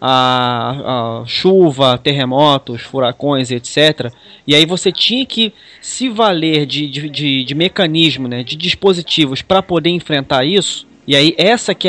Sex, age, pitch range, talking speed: male, 20-39, 135-185 Hz, 145 wpm